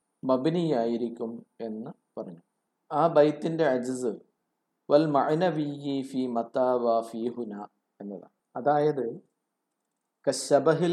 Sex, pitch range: male, 130-170 Hz